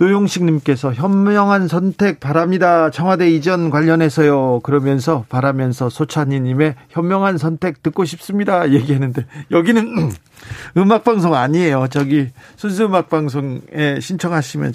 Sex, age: male, 40-59